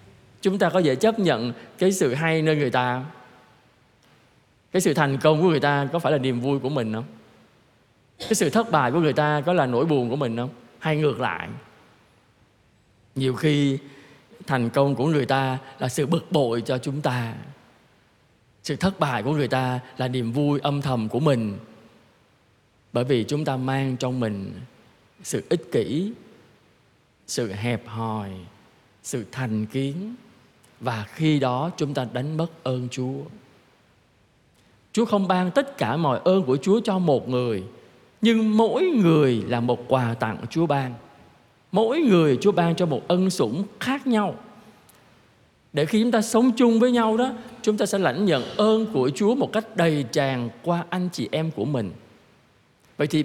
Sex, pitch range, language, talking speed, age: male, 125-195 Hz, Vietnamese, 175 wpm, 20-39